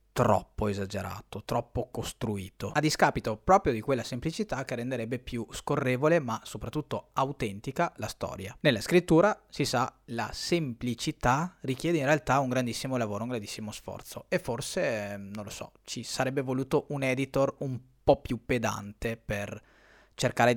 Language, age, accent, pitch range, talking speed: Italian, 30-49, native, 110-155 Hz, 145 wpm